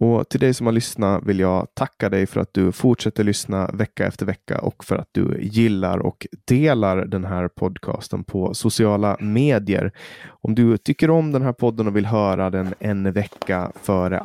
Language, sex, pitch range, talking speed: Swedish, male, 90-115 Hz, 190 wpm